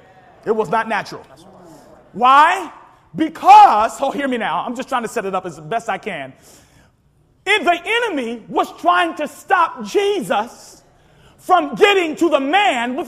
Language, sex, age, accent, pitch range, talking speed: English, male, 40-59, American, 285-365 Hz, 160 wpm